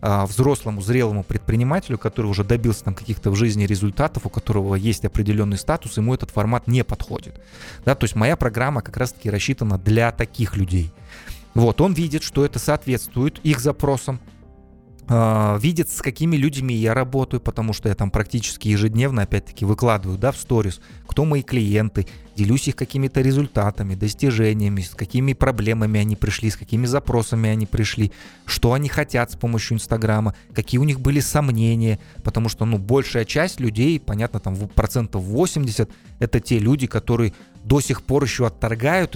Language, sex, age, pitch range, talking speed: Russian, male, 20-39, 105-125 Hz, 160 wpm